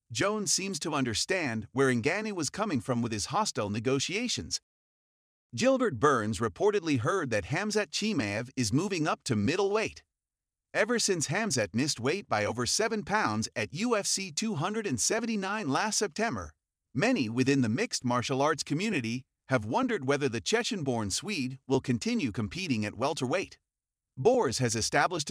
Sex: male